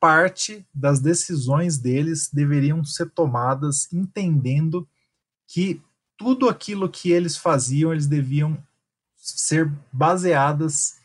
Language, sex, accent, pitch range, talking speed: Portuguese, male, Brazilian, 135-160 Hz, 100 wpm